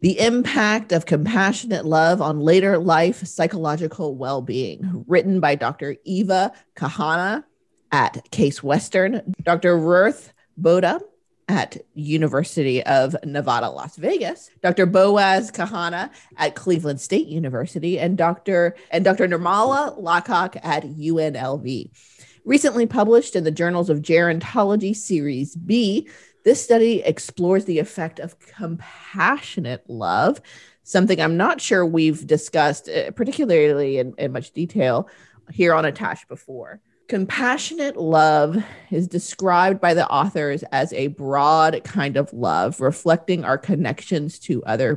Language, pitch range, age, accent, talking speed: English, 150-195 Hz, 30-49, American, 125 wpm